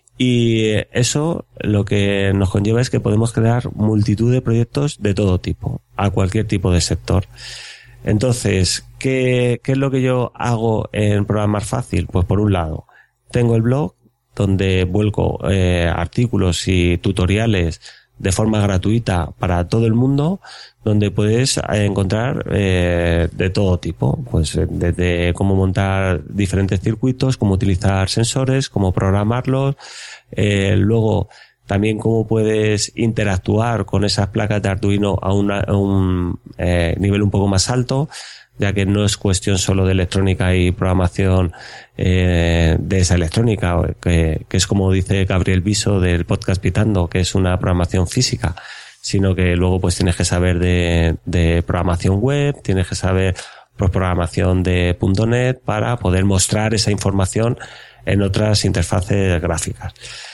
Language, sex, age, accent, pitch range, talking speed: Spanish, male, 30-49, Spanish, 90-115 Hz, 145 wpm